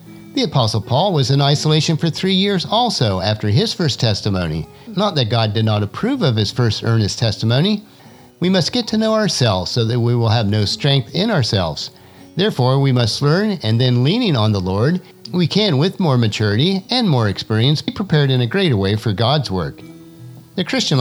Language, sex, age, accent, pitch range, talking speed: English, male, 50-69, American, 110-180 Hz, 195 wpm